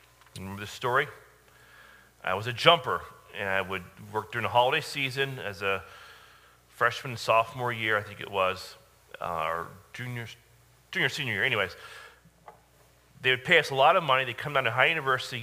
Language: English